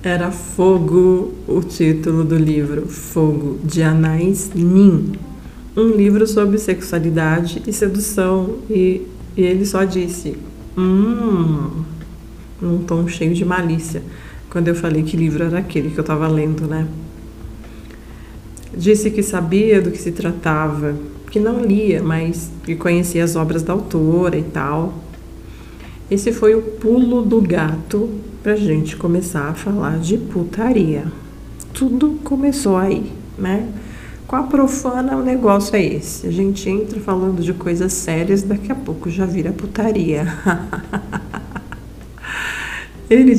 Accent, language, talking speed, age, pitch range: Brazilian, Portuguese, 135 wpm, 40-59, 155-195 Hz